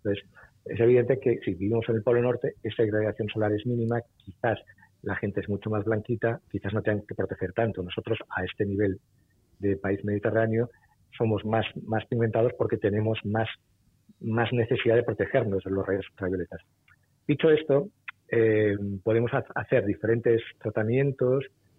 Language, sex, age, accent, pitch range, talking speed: Spanish, male, 40-59, Spanish, 100-125 Hz, 155 wpm